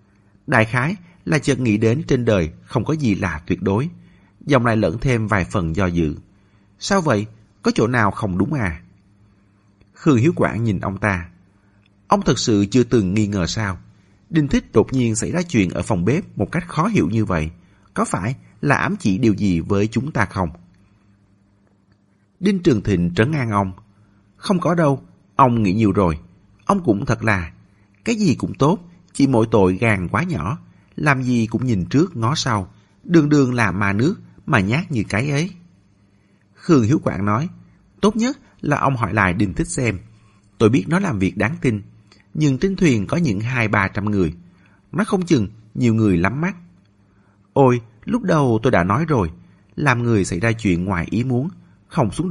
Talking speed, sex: 195 wpm, male